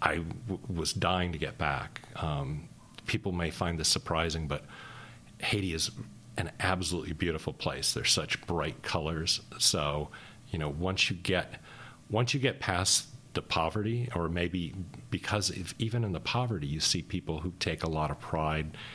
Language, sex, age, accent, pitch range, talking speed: English, male, 40-59, American, 80-110 Hz, 160 wpm